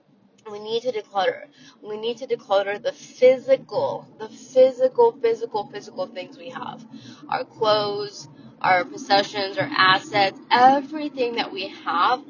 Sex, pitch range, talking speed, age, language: female, 190-285 Hz, 130 wpm, 20-39, English